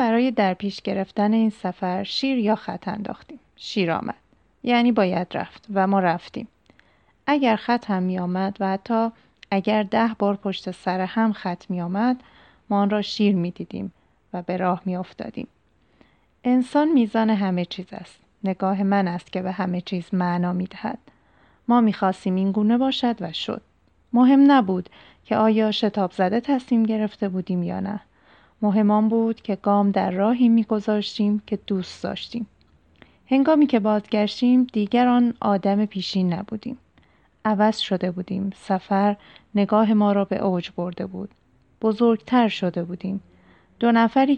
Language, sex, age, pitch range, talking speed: Persian, female, 30-49, 190-225 Hz, 155 wpm